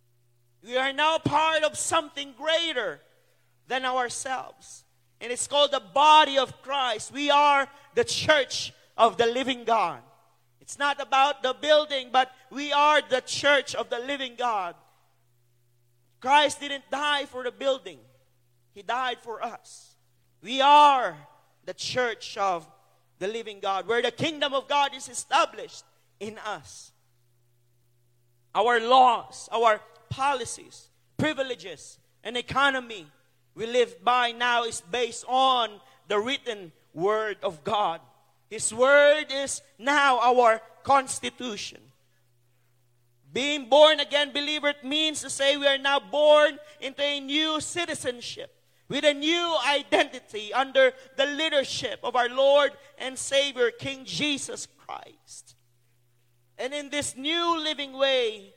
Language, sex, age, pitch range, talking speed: English, male, 40-59, 175-285 Hz, 130 wpm